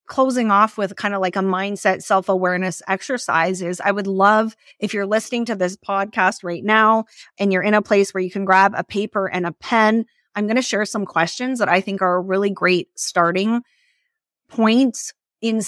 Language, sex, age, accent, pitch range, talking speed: English, female, 30-49, American, 185-225 Hz, 195 wpm